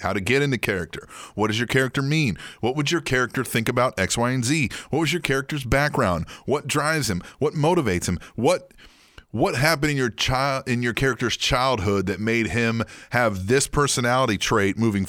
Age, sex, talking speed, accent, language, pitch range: 30-49, male, 195 wpm, American, English, 105-160 Hz